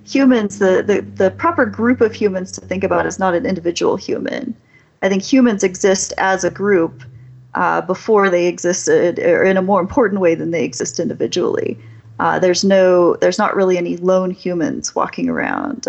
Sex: female